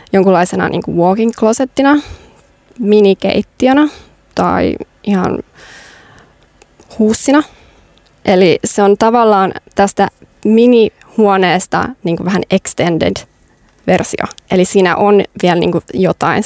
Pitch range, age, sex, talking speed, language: 180-215 Hz, 20-39, female, 90 wpm, Finnish